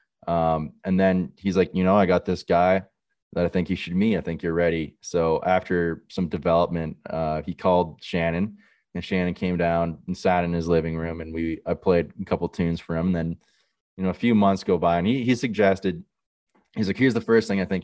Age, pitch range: 20-39, 85-95 Hz